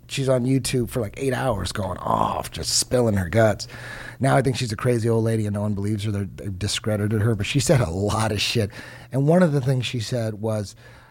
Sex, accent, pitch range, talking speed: male, American, 100-120 Hz, 245 wpm